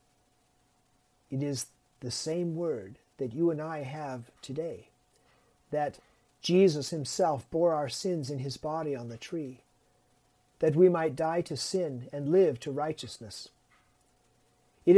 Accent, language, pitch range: American, English, 140-180 Hz